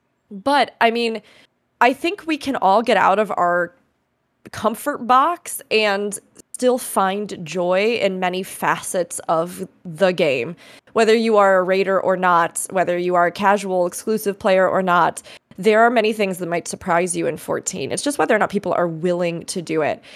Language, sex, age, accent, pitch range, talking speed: English, female, 20-39, American, 185-230 Hz, 180 wpm